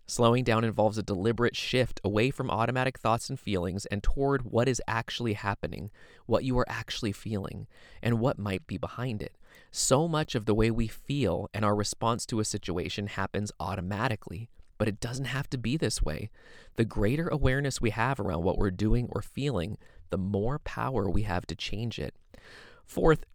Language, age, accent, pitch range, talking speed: English, 20-39, American, 100-130 Hz, 185 wpm